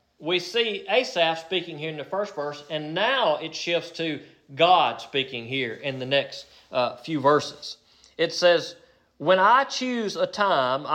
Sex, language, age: male, English, 40-59